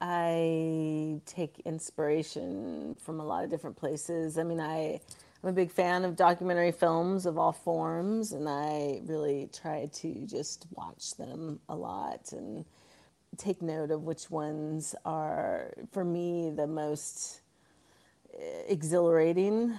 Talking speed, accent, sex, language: 135 wpm, American, female, English